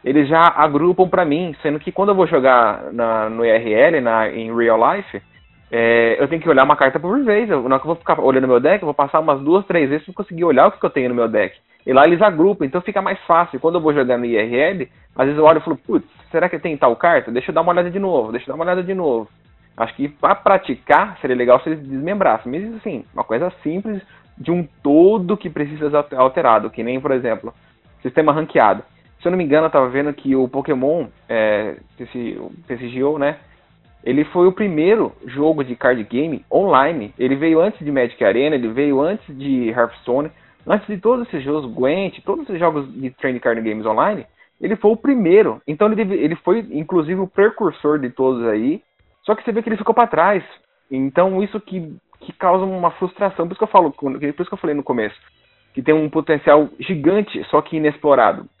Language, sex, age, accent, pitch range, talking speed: Portuguese, male, 20-39, Brazilian, 130-185 Hz, 220 wpm